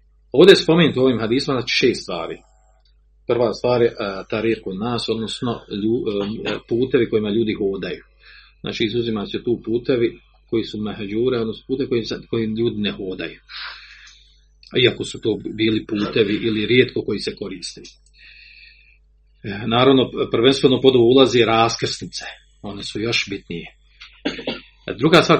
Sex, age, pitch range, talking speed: male, 40-59, 105-130 Hz, 135 wpm